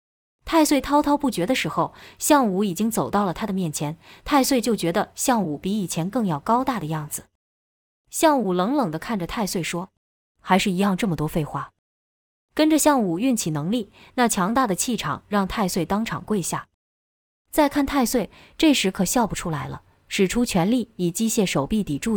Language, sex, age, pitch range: Chinese, female, 20-39, 165-230 Hz